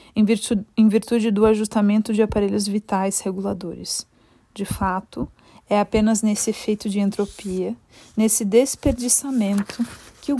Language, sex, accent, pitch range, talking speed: Portuguese, female, Brazilian, 200-225 Hz, 120 wpm